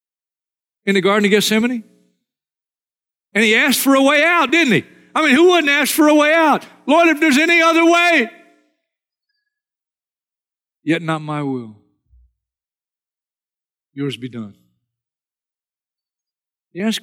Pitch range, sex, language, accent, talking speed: 125-185 Hz, male, English, American, 135 wpm